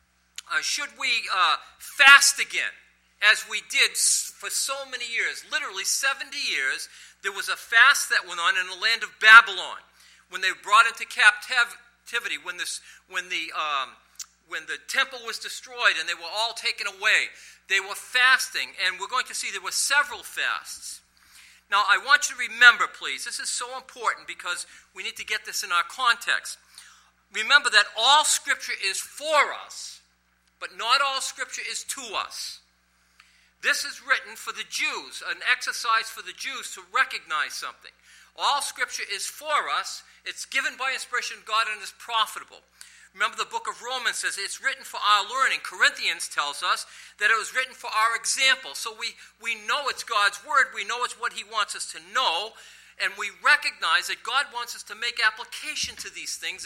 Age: 50-69